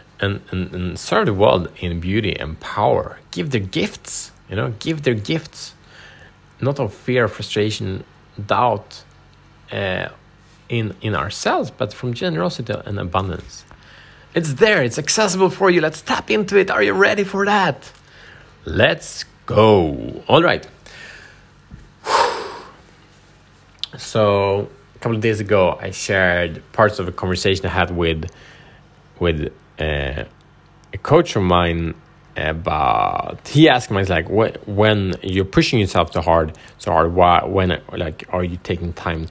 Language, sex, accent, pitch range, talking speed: Swedish, male, Norwegian, 95-135 Hz, 140 wpm